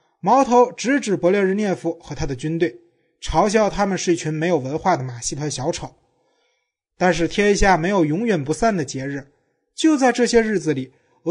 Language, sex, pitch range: Chinese, male, 155-225 Hz